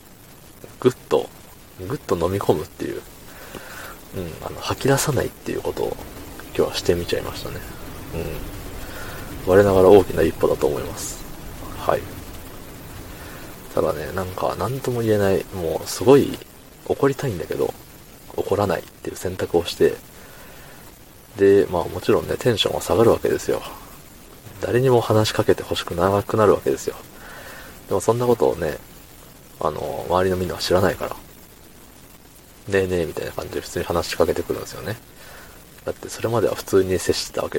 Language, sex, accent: Japanese, male, native